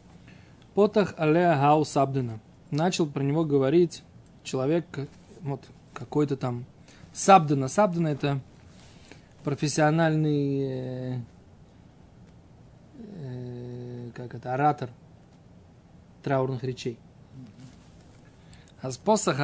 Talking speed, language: 70 wpm, Russian